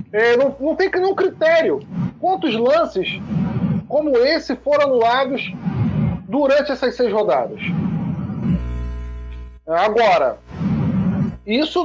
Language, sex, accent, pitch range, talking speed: Portuguese, male, Brazilian, 180-265 Hz, 90 wpm